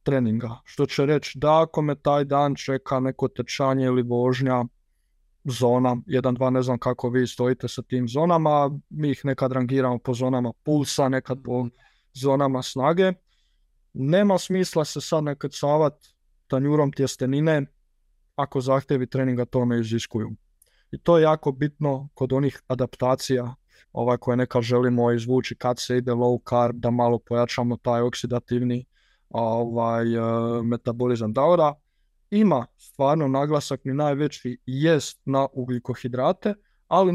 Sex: male